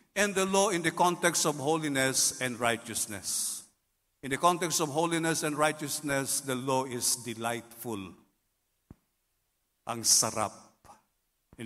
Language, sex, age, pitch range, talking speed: English, male, 50-69, 110-135 Hz, 125 wpm